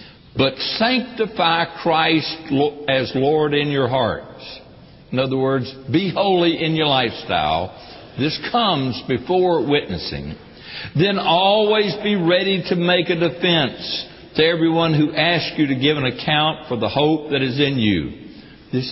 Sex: male